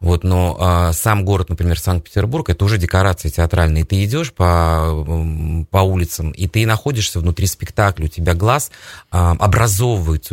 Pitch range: 85-100 Hz